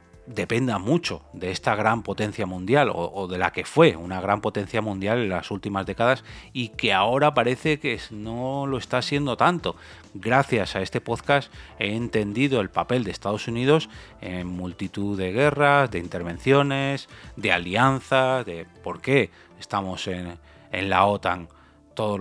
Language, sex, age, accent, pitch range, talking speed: Spanish, male, 30-49, Spanish, 95-125 Hz, 160 wpm